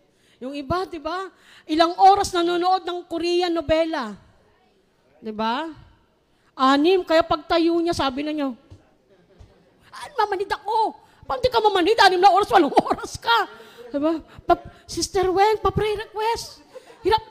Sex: female